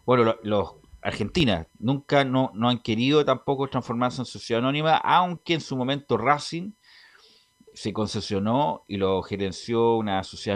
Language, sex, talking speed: Spanish, male, 140 wpm